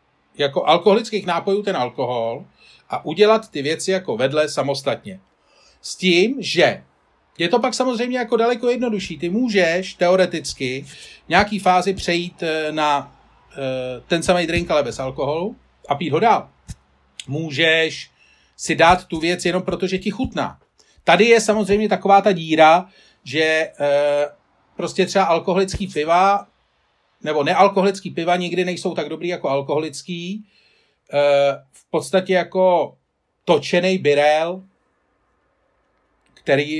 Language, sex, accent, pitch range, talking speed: Czech, male, native, 140-185 Hz, 125 wpm